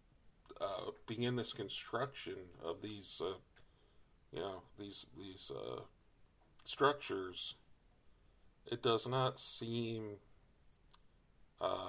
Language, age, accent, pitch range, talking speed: English, 50-69, American, 90-120 Hz, 95 wpm